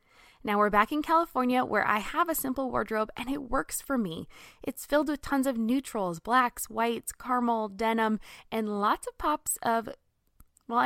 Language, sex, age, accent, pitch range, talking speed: English, female, 20-39, American, 220-305 Hz, 175 wpm